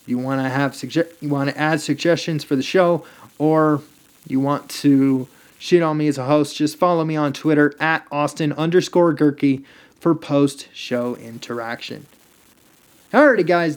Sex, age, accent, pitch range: male, 30-49, American, 140-170 Hz